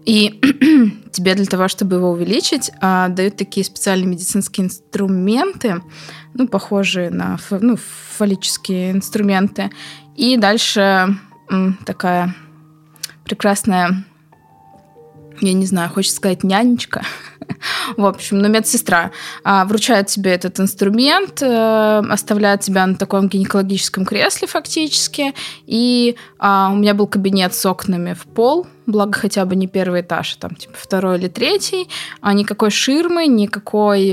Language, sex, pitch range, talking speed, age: Russian, female, 185-225 Hz, 115 wpm, 20-39